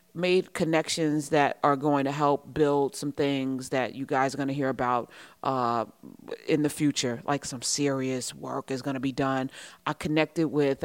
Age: 40-59